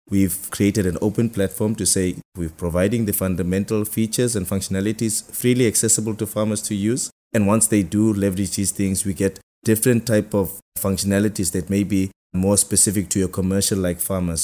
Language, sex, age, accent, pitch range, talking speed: English, male, 20-39, South African, 90-100 Hz, 175 wpm